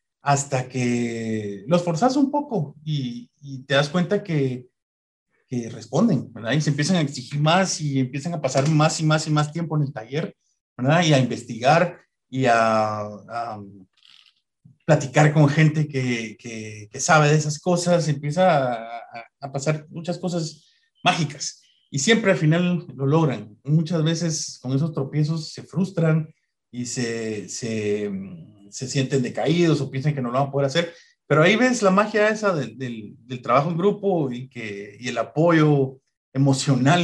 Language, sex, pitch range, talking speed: Spanish, male, 125-165 Hz, 170 wpm